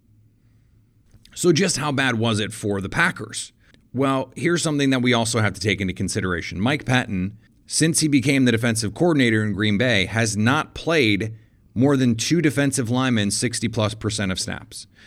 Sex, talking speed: male, 170 wpm